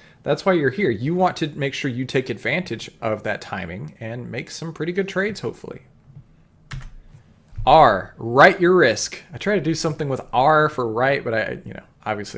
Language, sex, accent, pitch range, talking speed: English, male, American, 120-155 Hz, 195 wpm